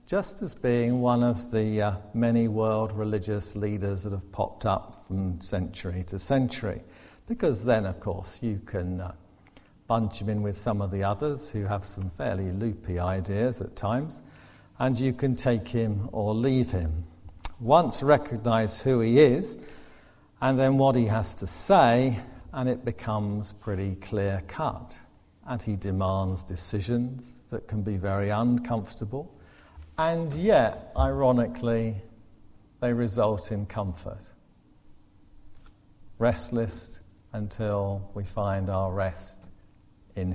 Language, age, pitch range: English, 50-69, 100-125 Hz